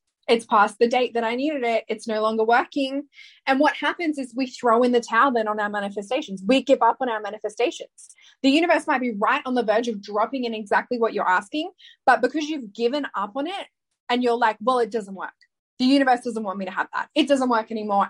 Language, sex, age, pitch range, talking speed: English, female, 10-29, 225-285 Hz, 240 wpm